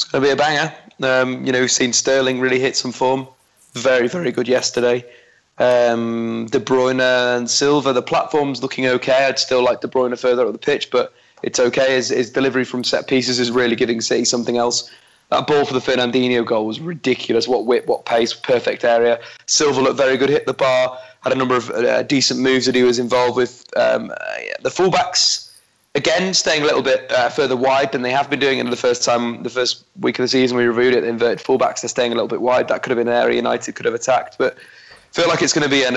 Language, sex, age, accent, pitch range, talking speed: English, male, 20-39, British, 125-135 Hz, 245 wpm